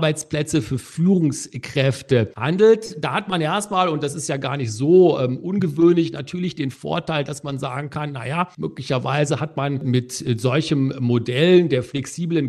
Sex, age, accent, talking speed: male, 50-69, German, 155 wpm